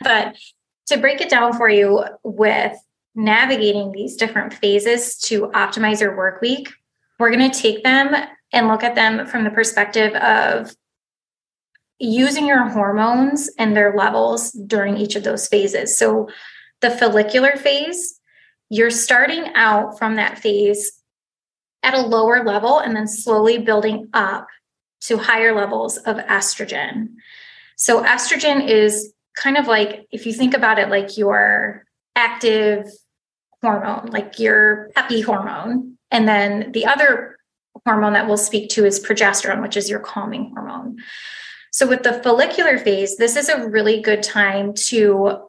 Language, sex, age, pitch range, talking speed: English, female, 20-39, 210-255 Hz, 150 wpm